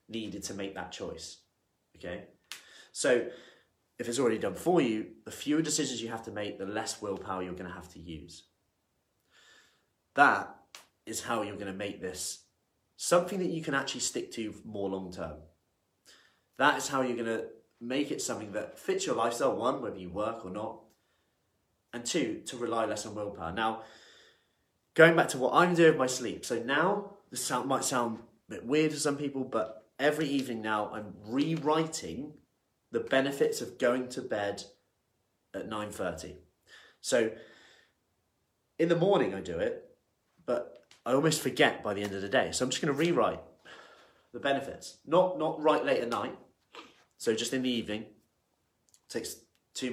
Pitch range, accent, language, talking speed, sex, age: 105-145 Hz, British, English, 175 wpm, male, 20-39